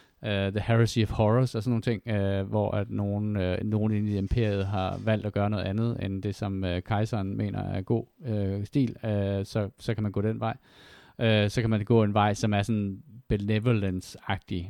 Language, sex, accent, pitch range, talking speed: Danish, male, native, 95-115 Hz, 220 wpm